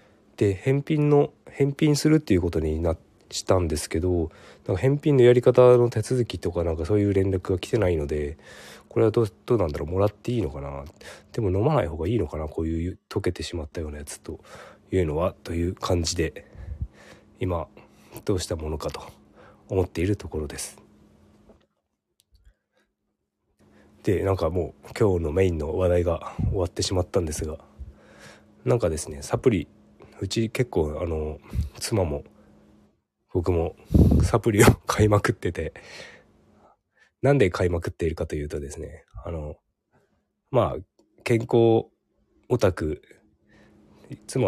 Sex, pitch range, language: male, 80-110 Hz, Japanese